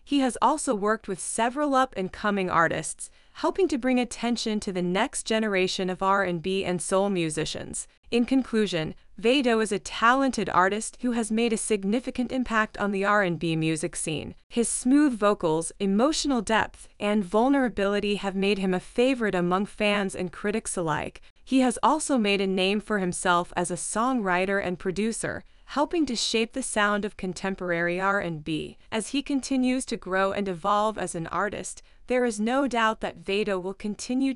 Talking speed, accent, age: 165 wpm, American, 20-39